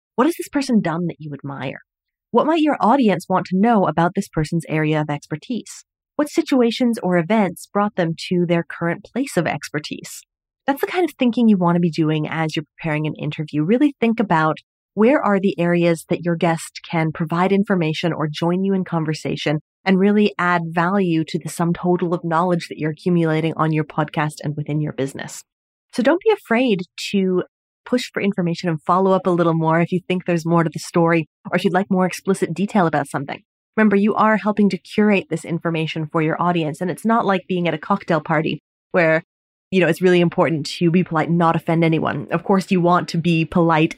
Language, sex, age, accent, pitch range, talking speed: English, female, 30-49, American, 160-200 Hz, 215 wpm